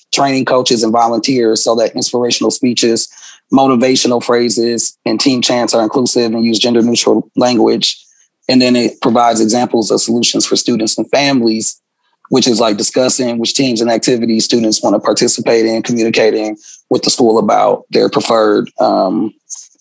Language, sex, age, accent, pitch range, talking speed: English, male, 30-49, American, 120-155 Hz, 155 wpm